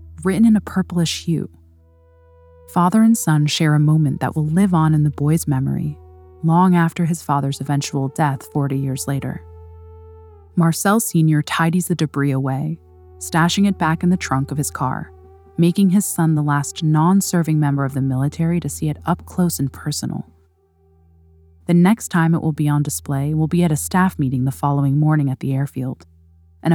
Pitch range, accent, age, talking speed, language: 135-175 Hz, American, 20-39, 180 wpm, English